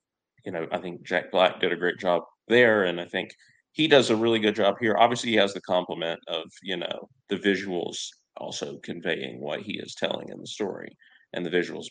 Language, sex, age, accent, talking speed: English, male, 30-49, American, 210 wpm